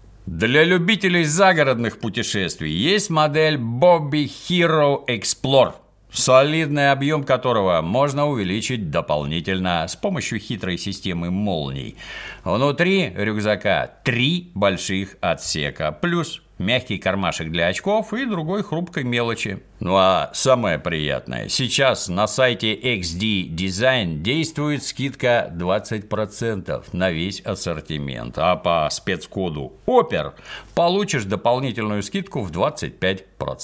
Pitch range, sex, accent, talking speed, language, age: 95-155 Hz, male, native, 105 wpm, Russian, 50-69